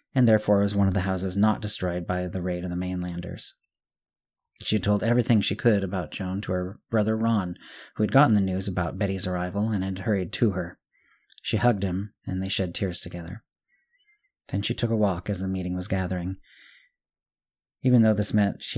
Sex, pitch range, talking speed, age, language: male, 95-115 Hz, 200 wpm, 40-59, English